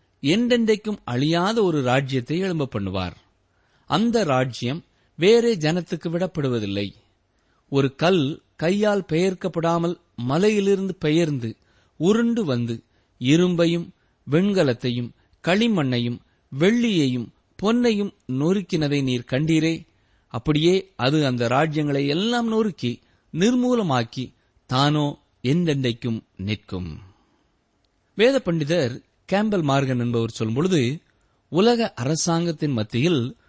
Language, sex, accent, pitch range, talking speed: Tamil, male, native, 115-185 Hz, 80 wpm